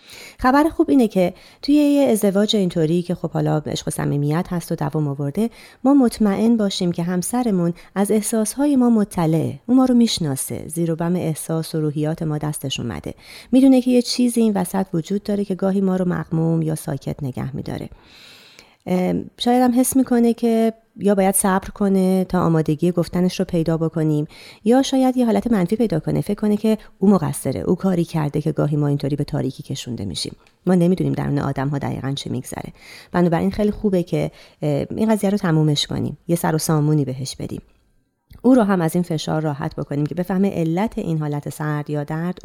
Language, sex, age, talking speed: Persian, female, 30-49, 185 wpm